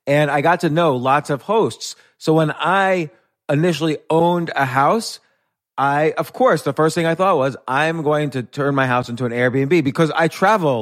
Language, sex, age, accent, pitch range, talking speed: English, male, 30-49, American, 125-150 Hz, 205 wpm